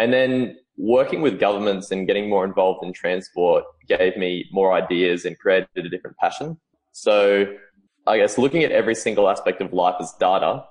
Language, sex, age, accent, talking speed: English, male, 20-39, Australian, 180 wpm